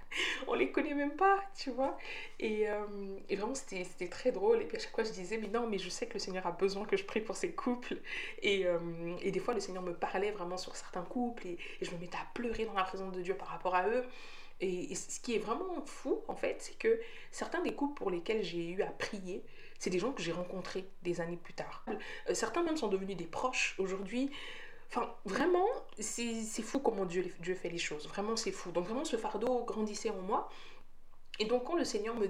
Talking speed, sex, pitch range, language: 240 wpm, female, 180-255 Hz, French